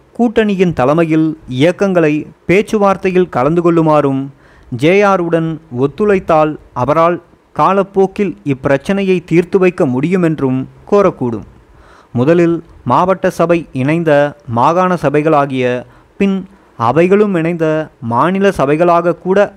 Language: Tamil